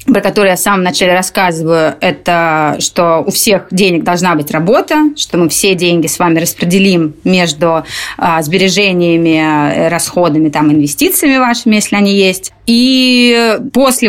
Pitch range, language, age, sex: 185-240 Hz, Russian, 20-39, female